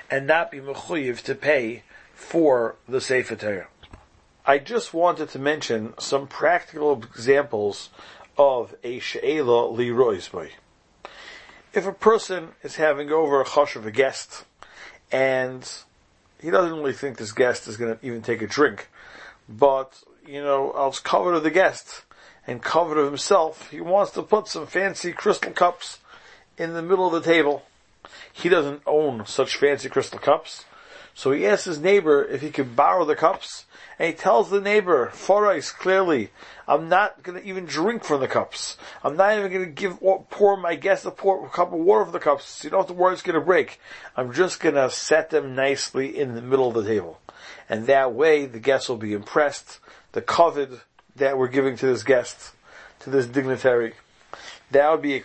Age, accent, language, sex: 40-59, American, English, male